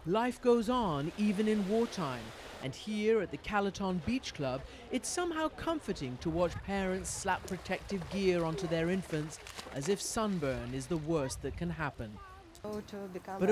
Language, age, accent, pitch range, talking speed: English, 50-69, British, 155-215 Hz, 155 wpm